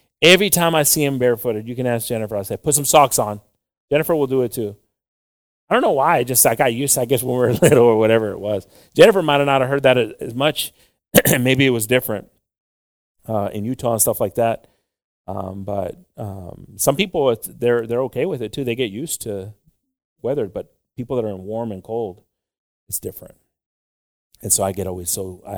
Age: 30-49